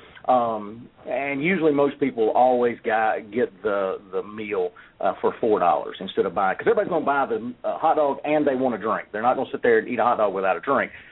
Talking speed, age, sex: 235 wpm, 40-59, male